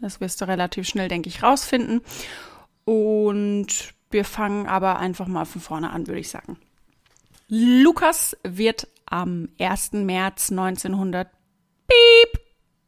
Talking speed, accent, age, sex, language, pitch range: 120 wpm, German, 30-49, female, German, 185-235 Hz